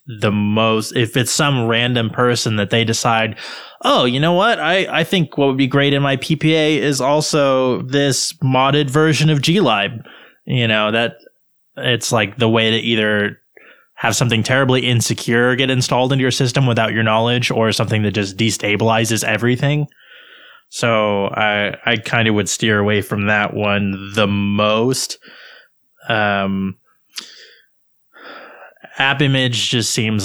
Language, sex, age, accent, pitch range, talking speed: English, male, 20-39, American, 105-125 Hz, 150 wpm